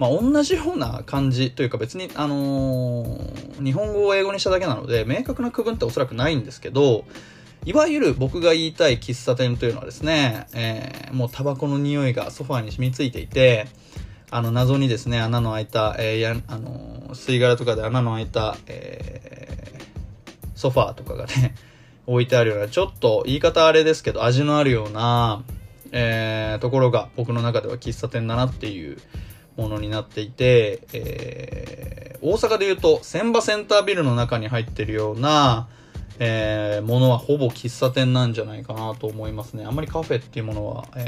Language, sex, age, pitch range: Japanese, male, 20-39, 115-145 Hz